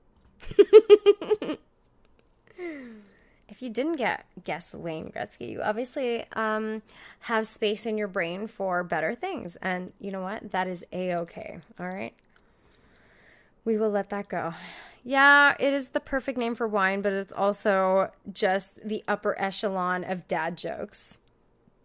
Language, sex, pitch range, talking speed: English, female, 195-280 Hz, 135 wpm